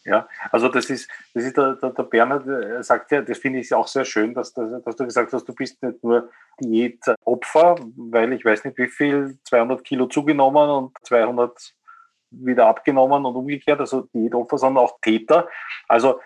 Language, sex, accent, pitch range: German, male, Austrian, 110-140 Hz